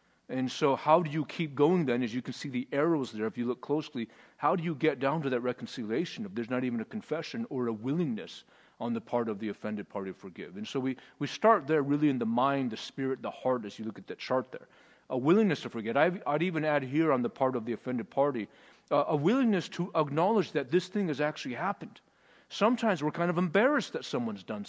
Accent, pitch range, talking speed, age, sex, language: American, 120-165 Hz, 245 wpm, 40-59, male, English